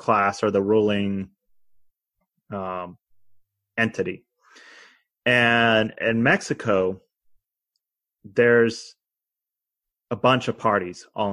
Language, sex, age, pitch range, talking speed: English, male, 30-49, 100-135 Hz, 80 wpm